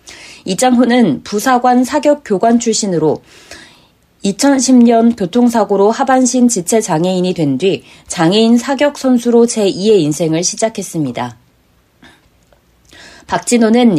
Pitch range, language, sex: 185-245 Hz, Korean, female